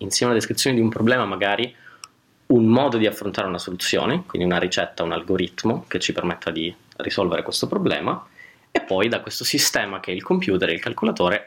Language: Italian